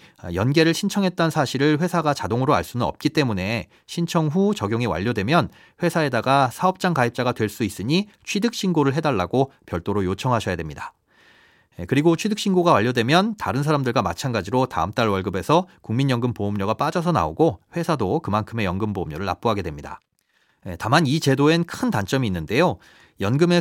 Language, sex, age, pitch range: Korean, male, 30-49, 105-170 Hz